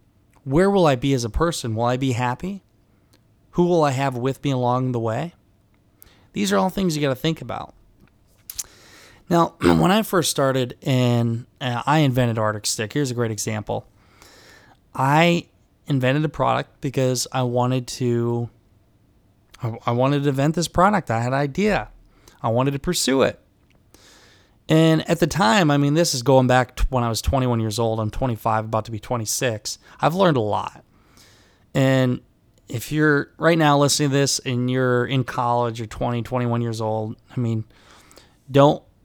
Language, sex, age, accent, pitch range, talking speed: English, male, 20-39, American, 110-140 Hz, 175 wpm